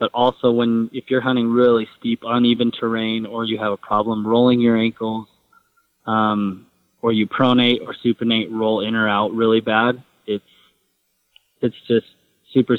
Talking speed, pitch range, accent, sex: 160 wpm, 110-125 Hz, American, male